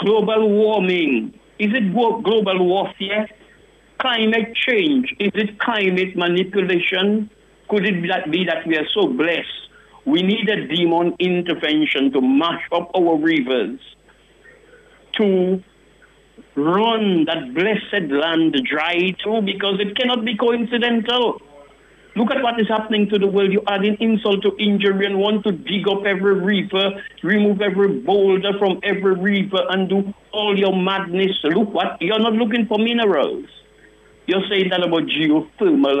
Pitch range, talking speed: 180-220 Hz, 140 wpm